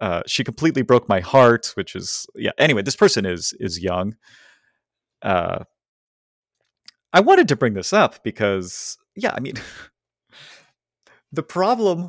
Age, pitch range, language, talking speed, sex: 30-49, 100-130 Hz, English, 140 wpm, male